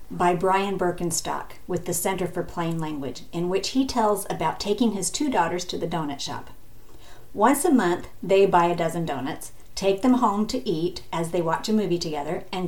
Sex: female